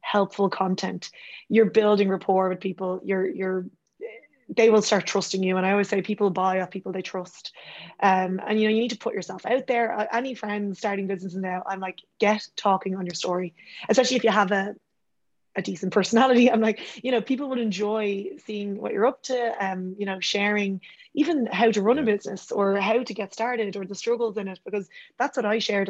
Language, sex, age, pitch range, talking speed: English, female, 20-39, 190-220 Hz, 215 wpm